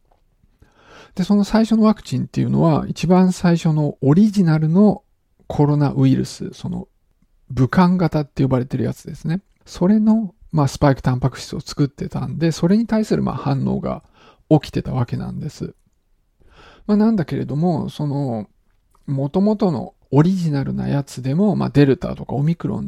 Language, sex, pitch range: Japanese, male, 140-185 Hz